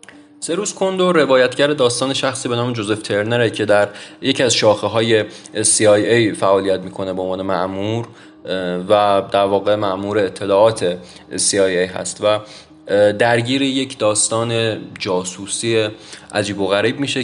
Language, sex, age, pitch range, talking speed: Persian, male, 20-39, 100-120 Hz, 130 wpm